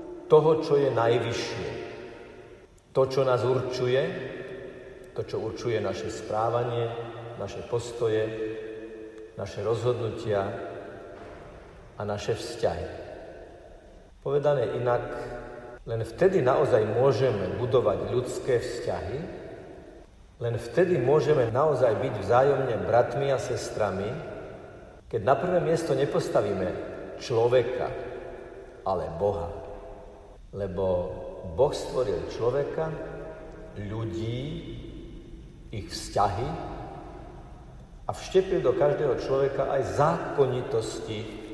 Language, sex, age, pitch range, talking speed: Slovak, male, 50-69, 110-135 Hz, 85 wpm